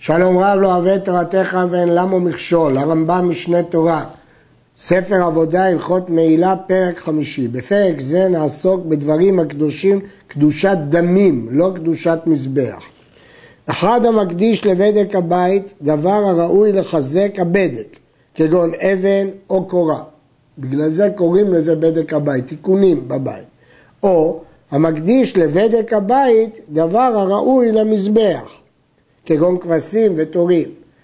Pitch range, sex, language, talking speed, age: 160-210 Hz, male, Hebrew, 110 wpm, 60-79